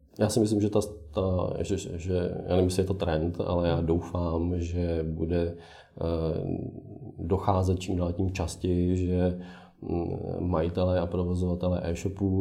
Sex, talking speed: male, 135 wpm